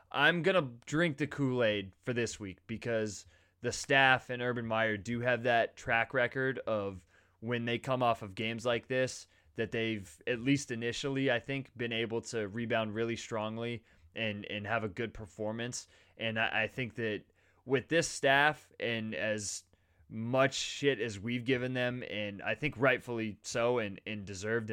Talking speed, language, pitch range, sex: 175 wpm, English, 105-125 Hz, male